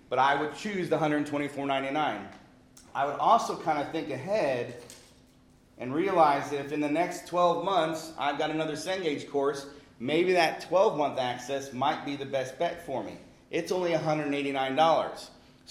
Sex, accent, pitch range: male, American, 135-160 Hz